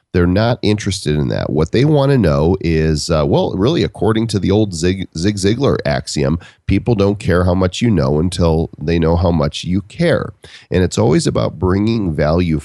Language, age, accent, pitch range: English, 40-59, American, 80-105 Hz